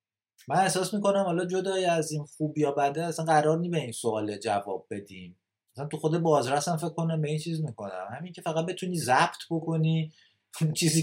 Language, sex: Persian, male